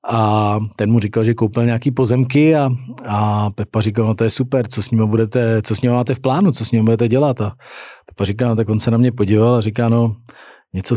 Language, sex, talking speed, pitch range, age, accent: Czech, male, 225 wpm, 105-120 Hz, 40-59, native